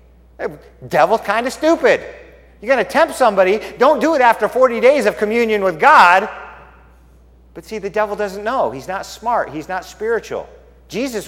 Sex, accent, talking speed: male, American, 175 wpm